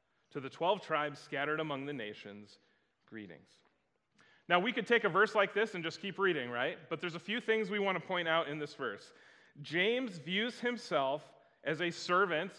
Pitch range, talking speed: 145-195 Hz, 195 wpm